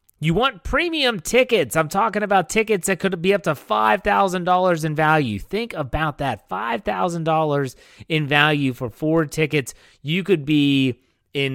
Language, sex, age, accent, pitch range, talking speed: English, male, 30-49, American, 130-170 Hz, 150 wpm